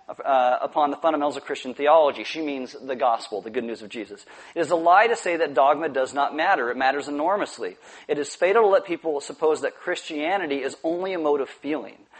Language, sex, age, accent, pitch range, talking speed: English, male, 40-59, American, 135-185 Hz, 220 wpm